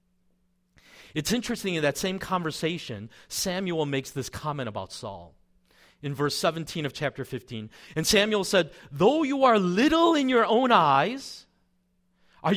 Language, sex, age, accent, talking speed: English, male, 40-59, American, 145 wpm